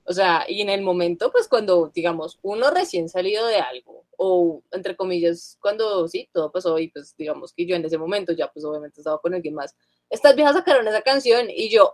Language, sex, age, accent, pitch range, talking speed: Spanish, female, 20-39, Colombian, 170-215 Hz, 215 wpm